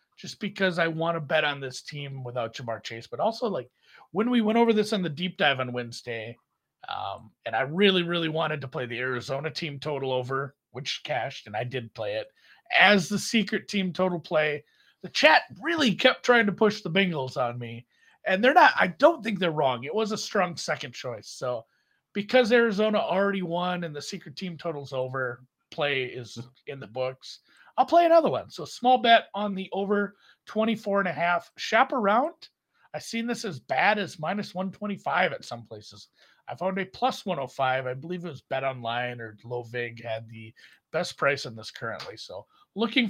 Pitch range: 130-210 Hz